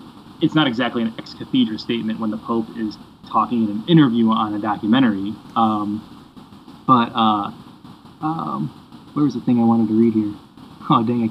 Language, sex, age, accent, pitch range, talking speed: English, male, 20-39, American, 105-120 Hz, 175 wpm